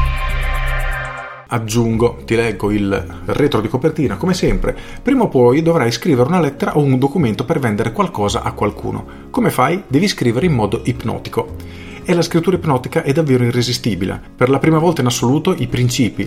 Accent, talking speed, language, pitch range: native, 170 wpm, Italian, 105-130 Hz